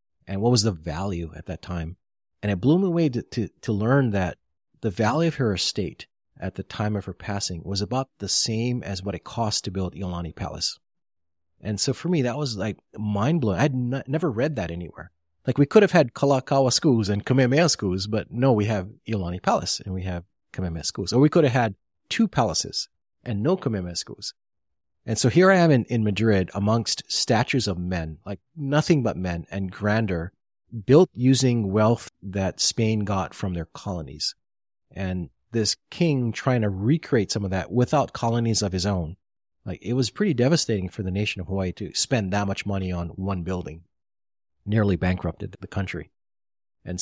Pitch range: 95-125 Hz